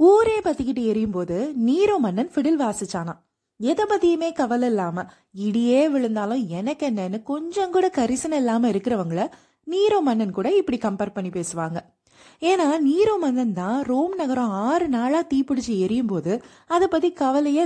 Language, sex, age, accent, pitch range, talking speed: Tamil, female, 20-39, native, 215-320 Hz, 135 wpm